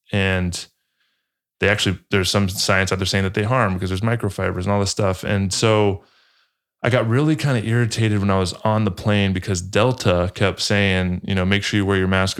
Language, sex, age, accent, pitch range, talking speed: English, male, 20-39, American, 95-105 Hz, 220 wpm